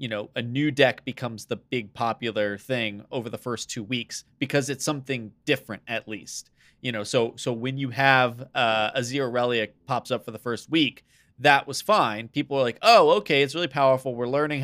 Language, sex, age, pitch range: English, male, 20-39, 115-145 Hz